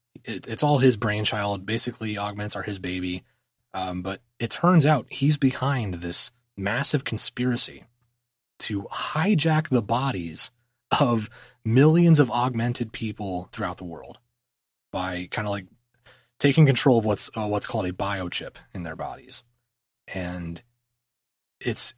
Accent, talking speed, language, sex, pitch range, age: American, 135 wpm, English, male, 100-125 Hz, 30-49